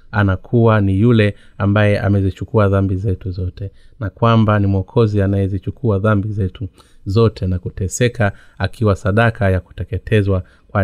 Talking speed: 125 wpm